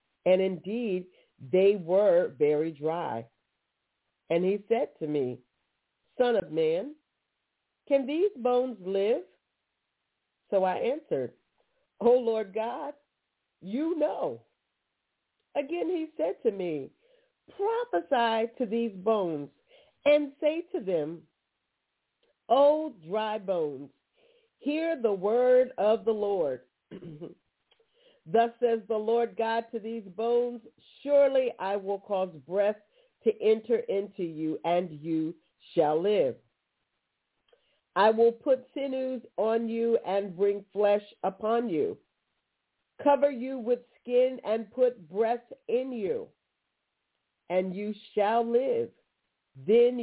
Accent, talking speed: American, 115 wpm